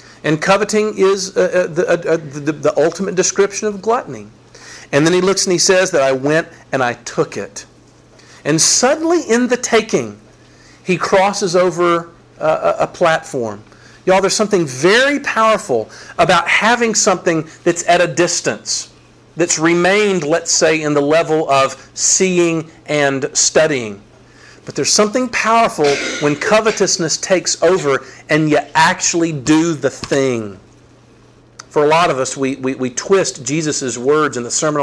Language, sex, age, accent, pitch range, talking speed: English, male, 50-69, American, 140-190 Hz, 145 wpm